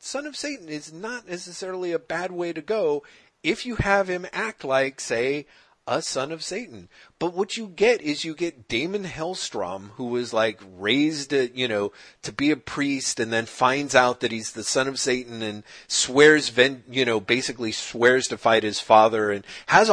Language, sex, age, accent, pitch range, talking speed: English, male, 40-59, American, 115-180 Hz, 190 wpm